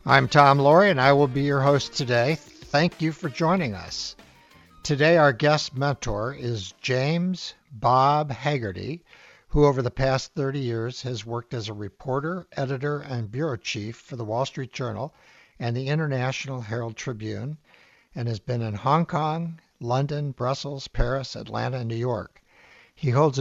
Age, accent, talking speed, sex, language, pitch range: 60-79, American, 160 wpm, male, English, 120-150 Hz